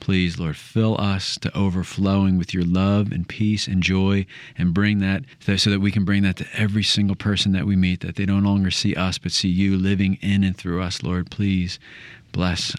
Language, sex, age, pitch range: English, male, 40-59, 95-120 Hz